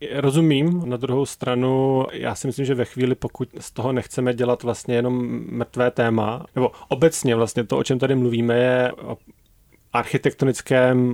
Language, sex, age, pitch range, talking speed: Czech, male, 30-49, 120-130 Hz, 160 wpm